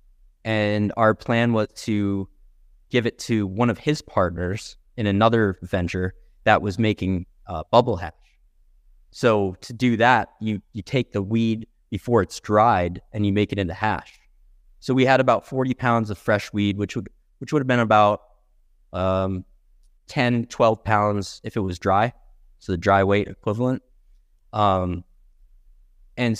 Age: 20-39